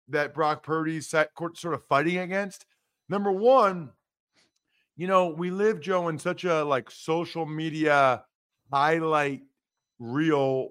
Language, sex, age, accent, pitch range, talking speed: English, male, 50-69, American, 140-200 Hz, 135 wpm